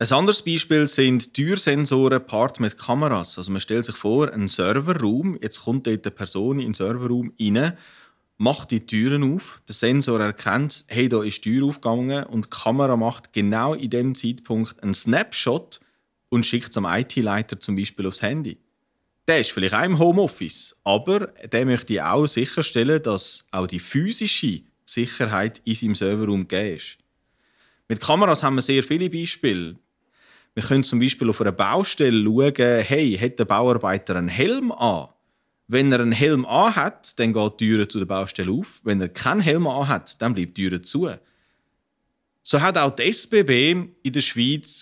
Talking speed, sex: 175 wpm, male